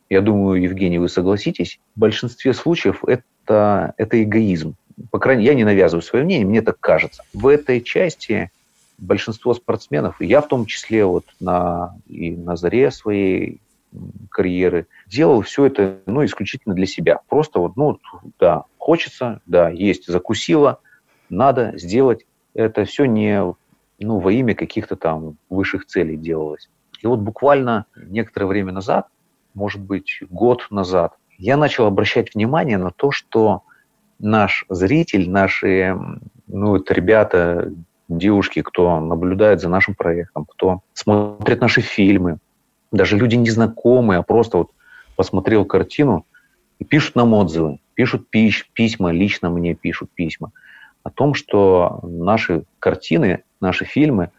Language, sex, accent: Russian, male, native